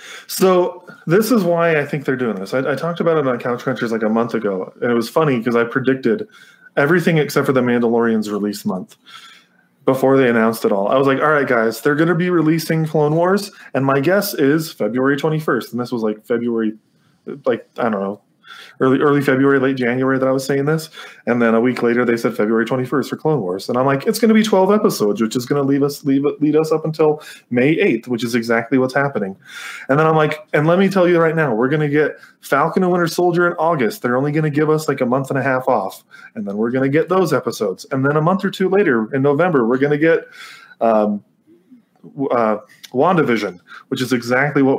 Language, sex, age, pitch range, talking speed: English, male, 20-39, 120-160 Hz, 240 wpm